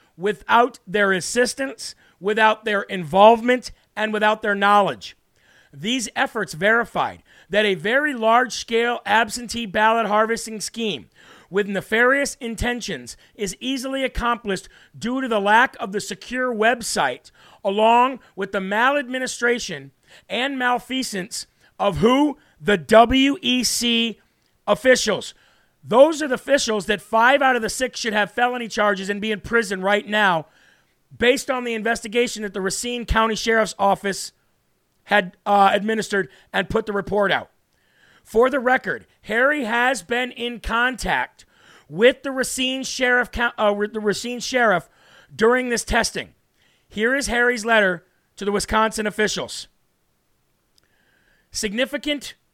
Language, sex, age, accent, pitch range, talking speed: English, male, 40-59, American, 205-245 Hz, 125 wpm